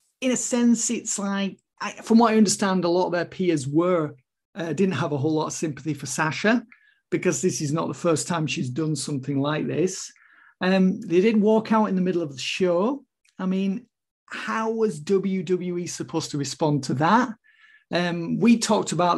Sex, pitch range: male, 160-200 Hz